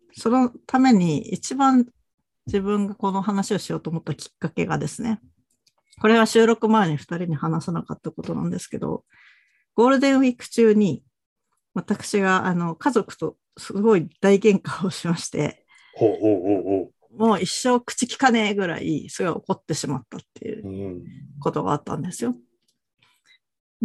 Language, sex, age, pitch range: Japanese, female, 50-69, 160-225 Hz